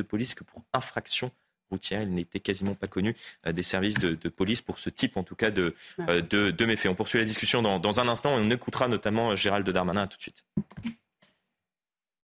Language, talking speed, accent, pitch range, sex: French, 220 wpm, French, 90-110 Hz, male